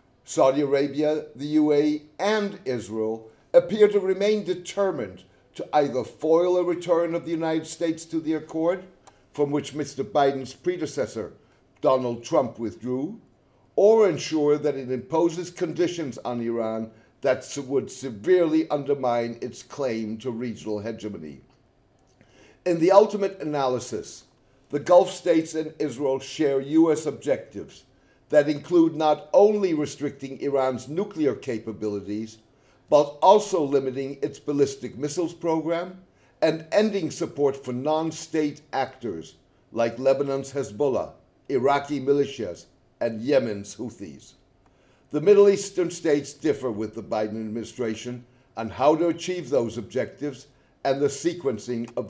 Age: 60-79